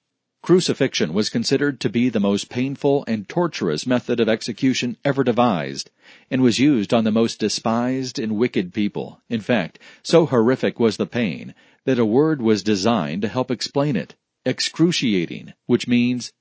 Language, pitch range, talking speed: English, 110-135 Hz, 160 wpm